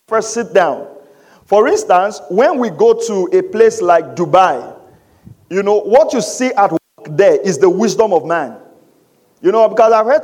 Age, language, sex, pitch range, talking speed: 50-69, English, male, 200-285 Hz, 180 wpm